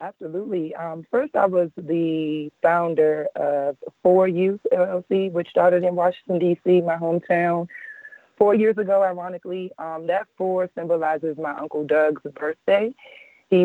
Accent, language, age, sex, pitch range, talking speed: American, English, 20-39, female, 145-175 Hz, 135 wpm